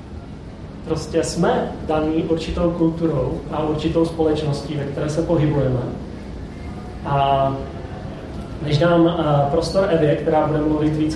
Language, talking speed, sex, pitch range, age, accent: Czech, 115 wpm, male, 135-165 Hz, 30-49, native